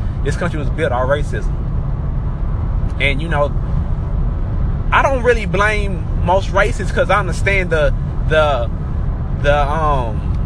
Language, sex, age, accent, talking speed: English, male, 20-39, American, 125 wpm